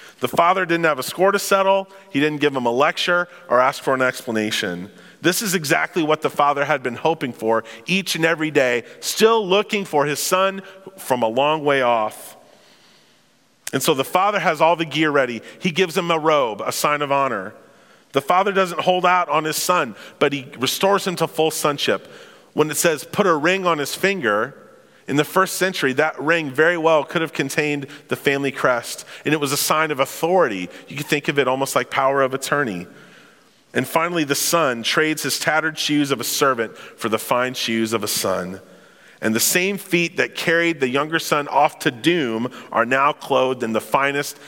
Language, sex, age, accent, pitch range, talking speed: English, male, 40-59, American, 135-180 Hz, 205 wpm